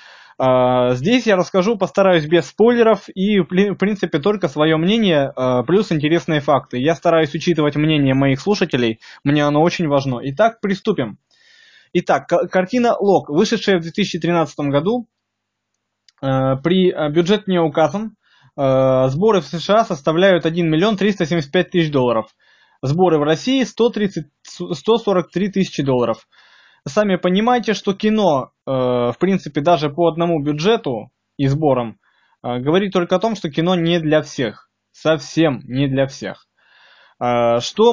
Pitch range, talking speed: 140-190 Hz, 125 wpm